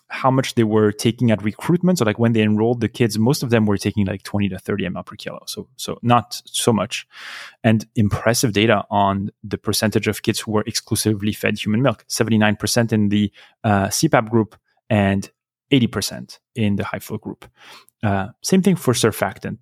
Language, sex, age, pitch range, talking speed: English, male, 30-49, 105-125 Hz, 195 wpm